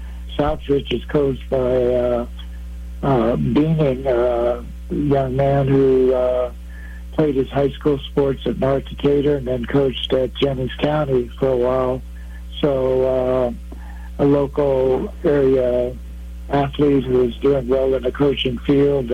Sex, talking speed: male, 140 wpm